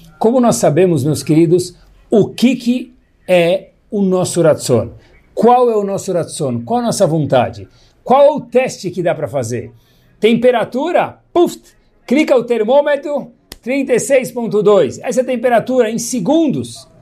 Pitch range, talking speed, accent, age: 140-235 Hz, 145 wpm, Brazilian, 60-79